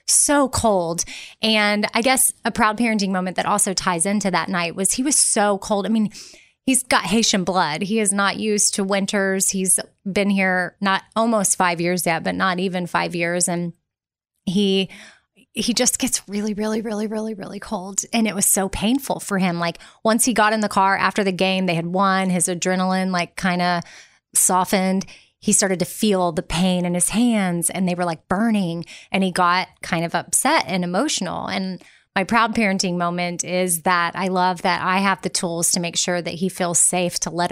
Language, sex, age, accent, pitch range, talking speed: English, female, 20-39, American, 180-215 Hz, 205 wpm